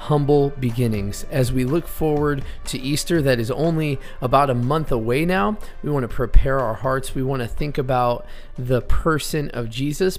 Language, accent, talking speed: English, American, 185 wpm